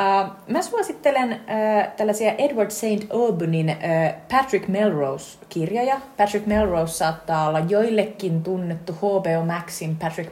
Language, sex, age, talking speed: Finnish, female, 30-49, 100 wpm